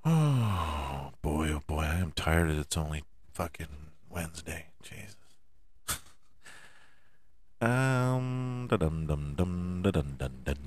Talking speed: 105 wpm